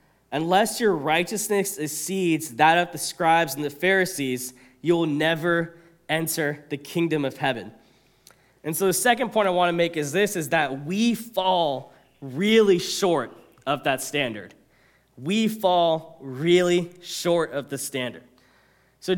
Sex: male